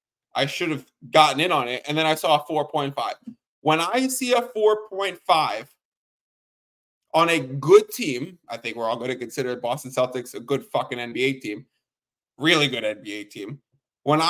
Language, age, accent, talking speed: English, 20-39, American, 170 wpm